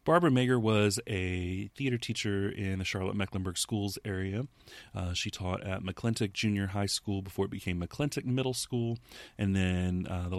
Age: 30-49